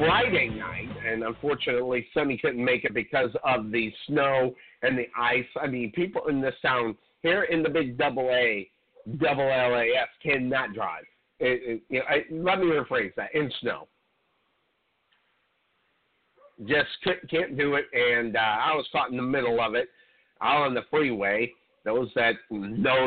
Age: 50-69